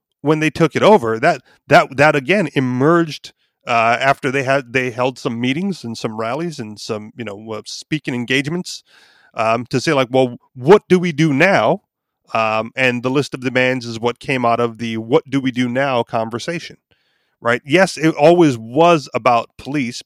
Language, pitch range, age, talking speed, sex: English, 115-155 Hz, 30-49, 190 wpm, male